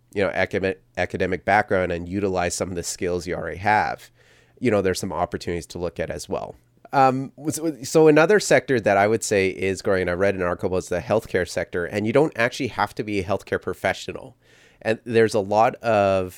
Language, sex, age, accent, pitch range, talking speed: English, male, 30-49, American, 90-115 Hz, 210 wpm